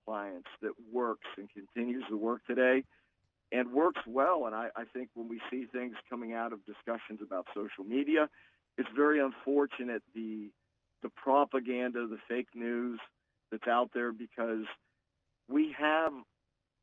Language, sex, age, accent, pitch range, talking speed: English, male, 50-69, American, 110-135 Hz, 145 wpm